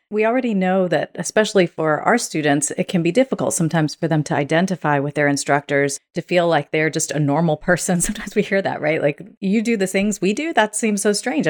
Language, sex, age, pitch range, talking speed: English, female, 40-59, 150-190 Hz, 230 wpm